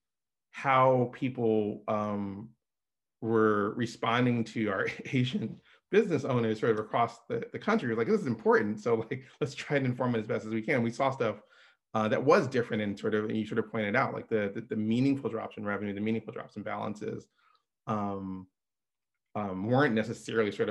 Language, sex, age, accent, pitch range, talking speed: English, male, 30-49, American, 105-125 Hz, 195 wpm